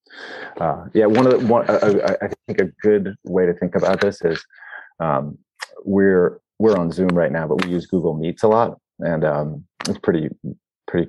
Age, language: 30-49, English